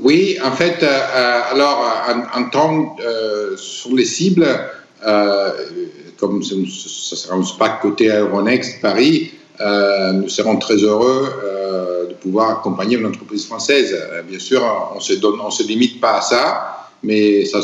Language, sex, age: French, male, 50-69